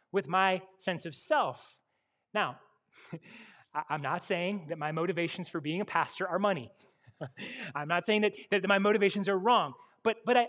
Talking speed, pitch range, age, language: 165 wpm, 150-220 Hz, 30-49, English